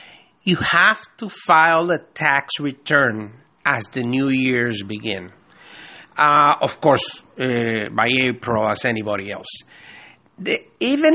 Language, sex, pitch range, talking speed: English, male, 130-185 Hz, 120 wpm